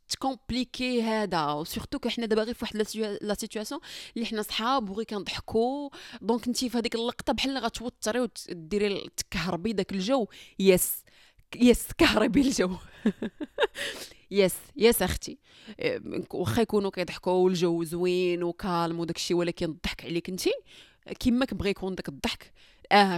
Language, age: Arabic, 20-39